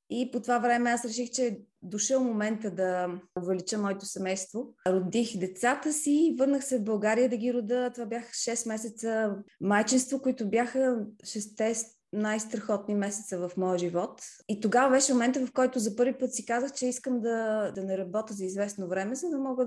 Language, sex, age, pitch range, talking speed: Bulgarian, female, 20-39, 195-245 Hz, 185 wpm